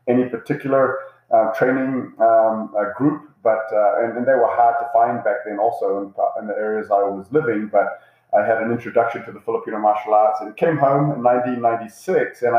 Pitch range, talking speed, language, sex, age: 105-130 Hz, 195 wpm, English, male, 30-49